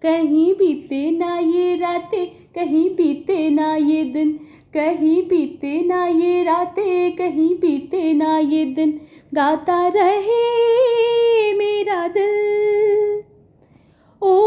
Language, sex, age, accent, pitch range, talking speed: Hindi, female, 20-39, native, 315-435 Hz, 105 wpm